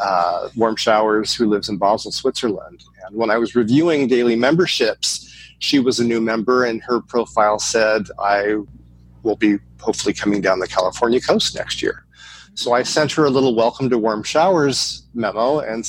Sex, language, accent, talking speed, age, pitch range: male, English, American, 180 wpm, 30-49, 110-130 Hz